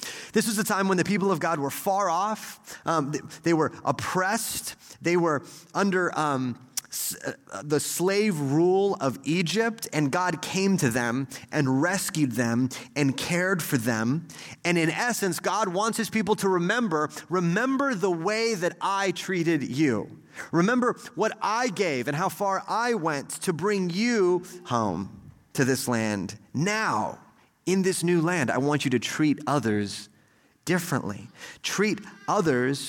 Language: English